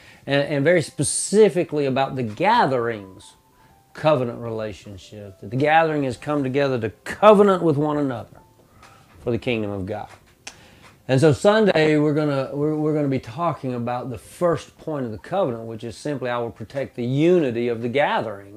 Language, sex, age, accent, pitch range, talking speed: English, male, 40-59, American, 110-150 Hz, 175 wpm